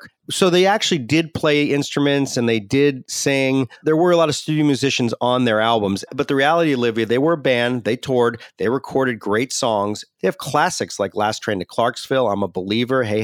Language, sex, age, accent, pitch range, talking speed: English, male, 40-59, American, 110-145 Hz, 210 wpm